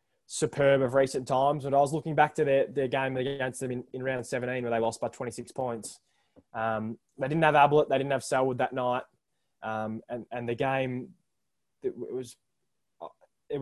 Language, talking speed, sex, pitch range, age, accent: English, 195 wpm, male, 120-155 Hz, 20-39, Australian